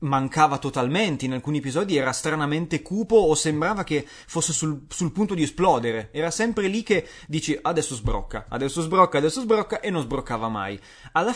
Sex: male